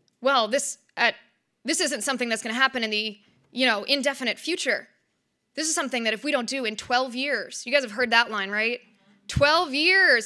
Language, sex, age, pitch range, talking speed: English, female, 20-39, 220-270 Hz, 210 wpm